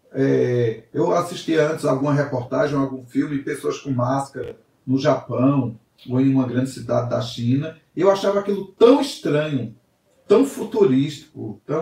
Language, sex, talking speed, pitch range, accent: Portuguese, male, 130 wpm, 130-180 Hz, Brazilian